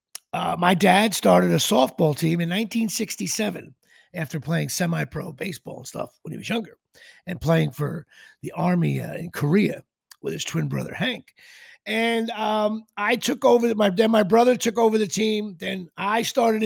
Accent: American